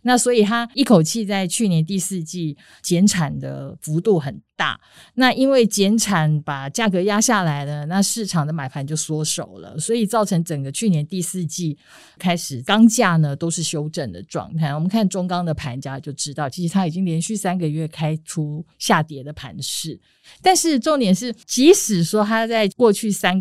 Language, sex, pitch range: Chinese, female, 155-220 Hz